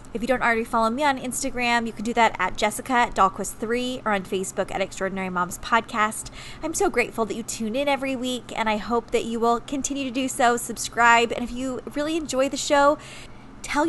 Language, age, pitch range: English, 20-39, 205-255 Hz